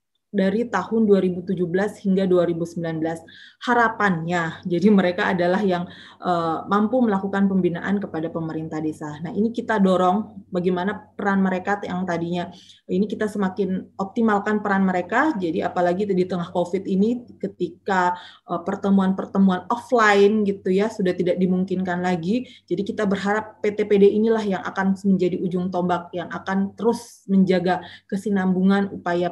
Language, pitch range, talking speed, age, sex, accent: Indonesian, 180-210 Hz, 130 wpm, 20-39, female, native